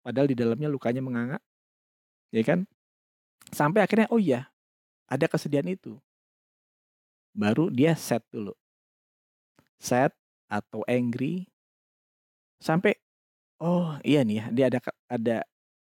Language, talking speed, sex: Indonesian, 110 wpm, male